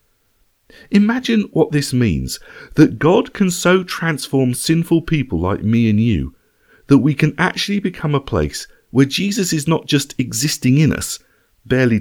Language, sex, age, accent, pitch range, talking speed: English, male, 40-59, British, 105-145 Hz, 155 wpm